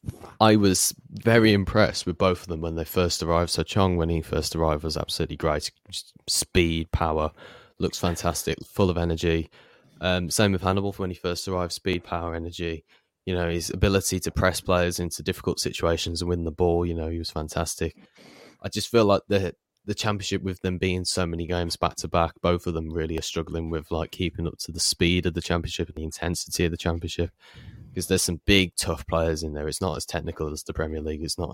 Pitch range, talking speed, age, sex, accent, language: 80-90 Hz, 215 wpm, 20-39, male, British, English